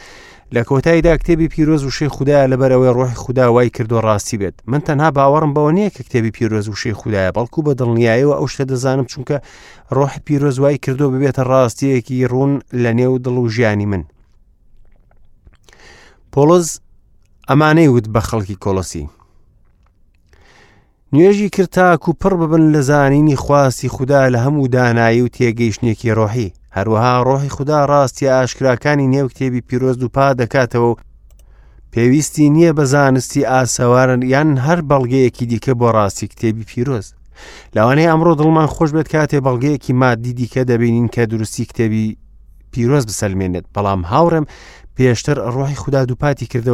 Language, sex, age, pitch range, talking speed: English, male, 30-49, 115-145 Hz, 155 wpm